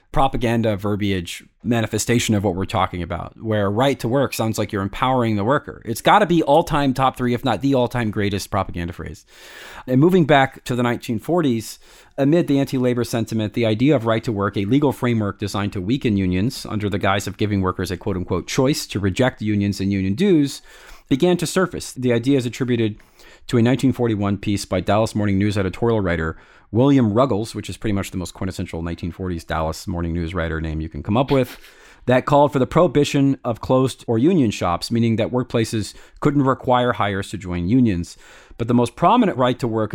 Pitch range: 95-125 Hz